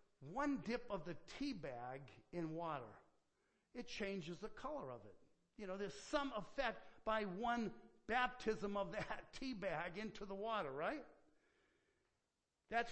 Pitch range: 185-245 Hz